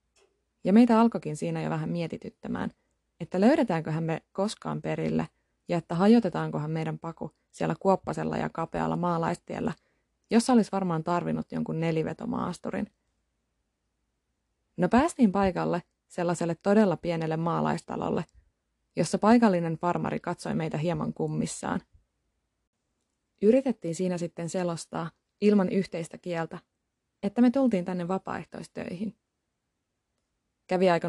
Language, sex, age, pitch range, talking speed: Finnish, female, 20-39, 165-205 Hz, 110 wpm